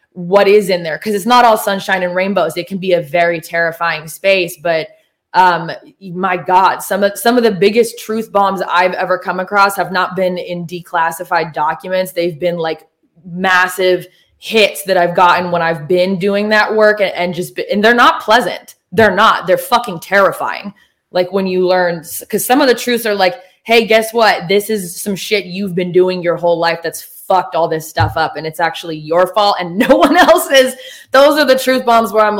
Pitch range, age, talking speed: 180-220 Hz, 20-39, 205 wpm